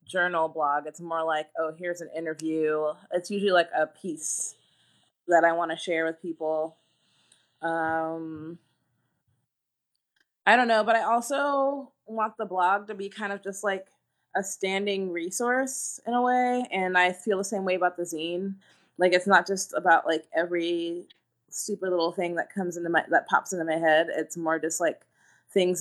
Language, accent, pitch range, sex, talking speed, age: English, American, 155-190 Hz, female, 175 wpm, 20-39